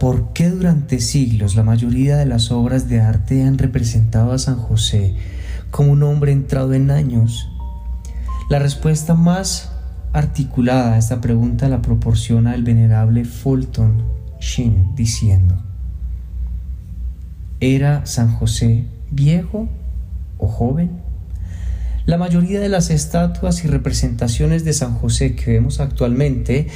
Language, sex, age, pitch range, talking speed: Spanish, male, 30-49, 110-145 Hz, 125 wpm